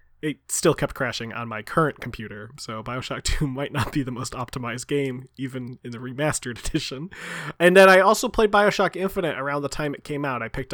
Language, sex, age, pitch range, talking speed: English, male, 20-39, 125-160 Hz, 210 wpm